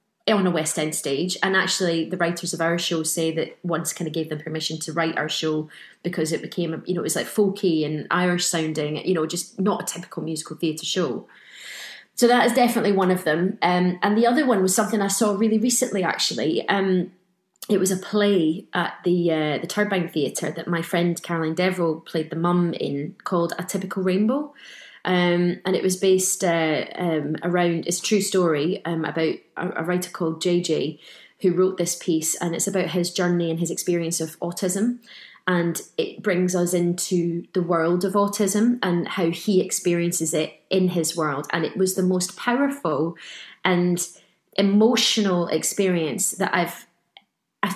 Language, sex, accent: English, female, British